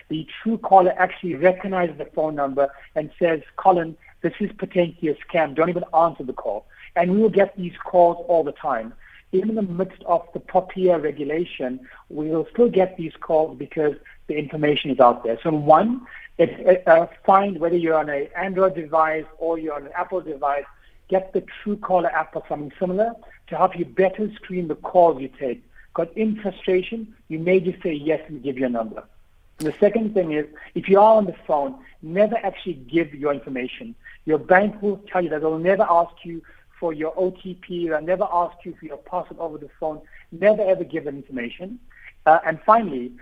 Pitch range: 155-190 Hz